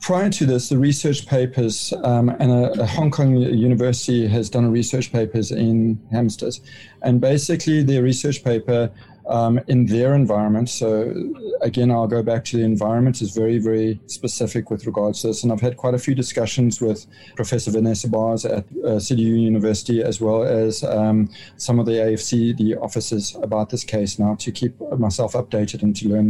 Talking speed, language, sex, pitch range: 185 wpm, English, male, 110-135 Hz